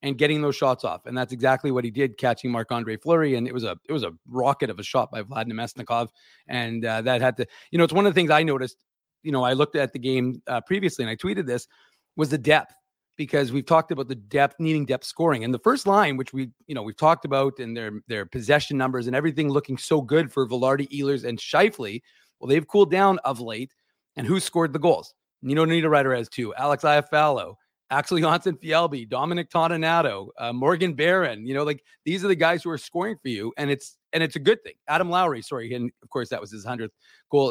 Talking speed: 240 wpm